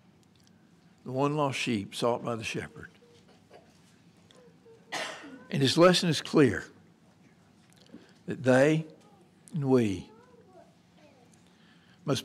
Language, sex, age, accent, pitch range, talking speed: English, male, 60-79, American, 125-170 Hz, 90 wpm